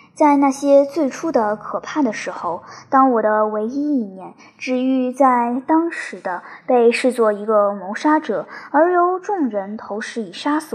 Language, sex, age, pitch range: Chinese, male, 10-29, 215-275 Hz